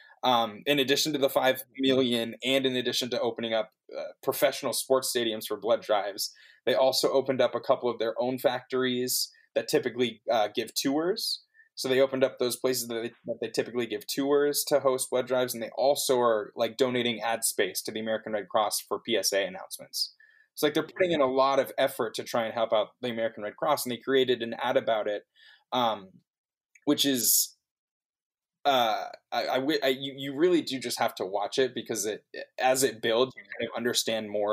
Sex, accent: male, American